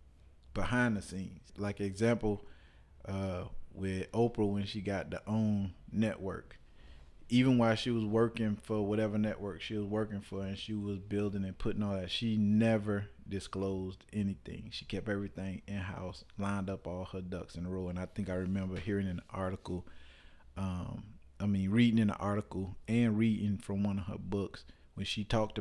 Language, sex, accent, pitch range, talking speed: English, male, American, 90-105 Hz, 175 wpm